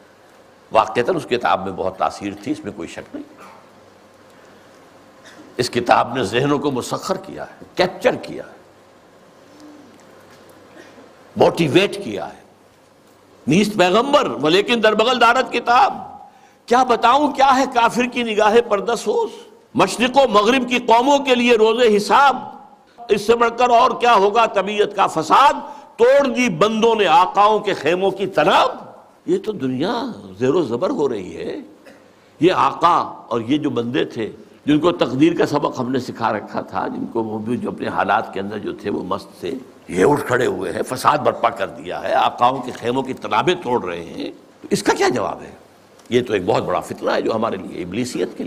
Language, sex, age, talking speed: Urdu, male, 60-79, 175 wpm